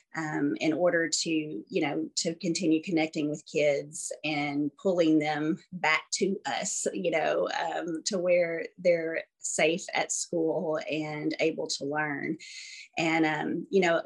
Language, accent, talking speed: English, American, 145 wpm